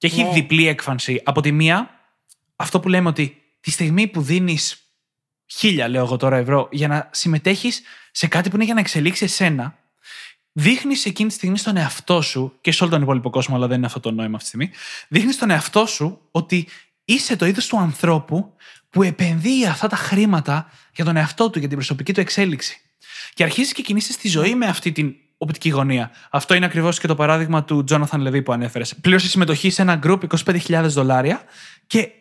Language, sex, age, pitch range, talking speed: Greek, male, 20-39, 150-190 Hz, 200 wpm